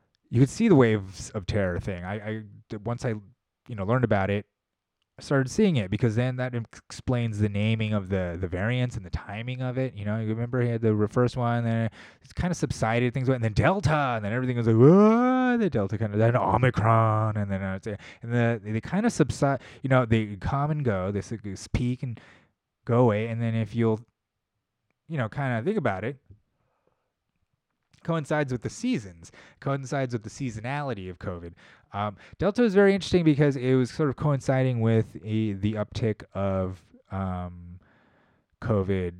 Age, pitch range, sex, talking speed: 20-39, 100-125 Hz, male, 195 wpm